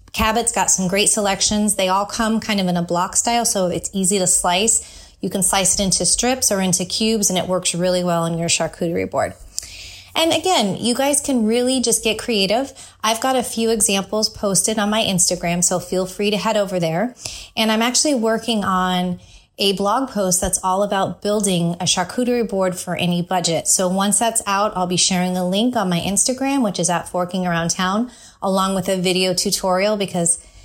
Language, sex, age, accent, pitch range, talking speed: English, female, 20-39, American, 180-225 Hz, 205 wpm